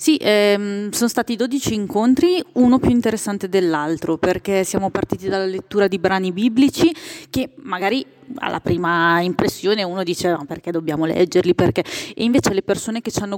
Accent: native